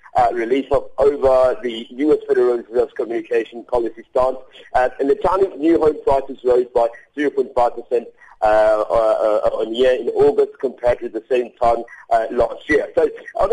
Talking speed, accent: 180 wpm, British